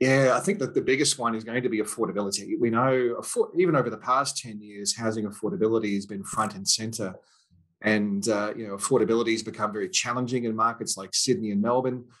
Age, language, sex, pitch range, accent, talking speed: 30-49, English, male, 105-130 Hz, Australian, 210 wpm